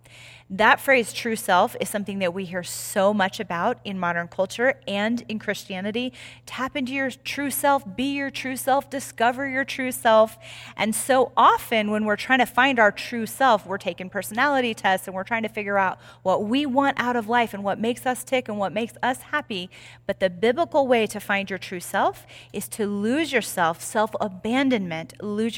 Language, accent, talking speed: English, American, 195 wpm